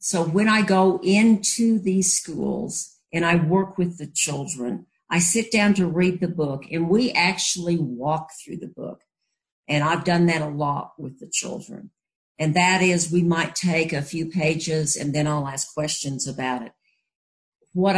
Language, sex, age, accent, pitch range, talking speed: English, female, 50-69, American, 160-195 Hz, 175 wpm